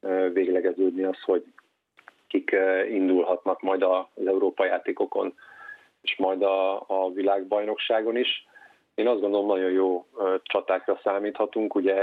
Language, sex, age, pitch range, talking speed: Hungarian, male, 30-49, 95-110 Hz, 115 wpm